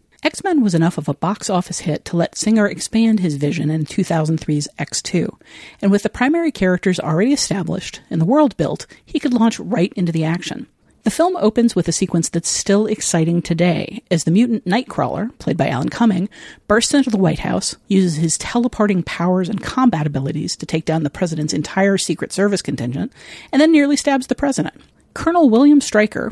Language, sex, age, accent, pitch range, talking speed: English, female, 50-69, American, 160-225 Hz, 190 wpm